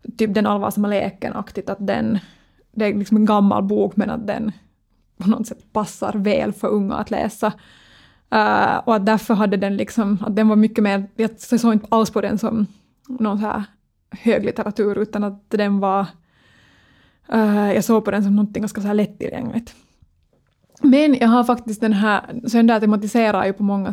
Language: Swedish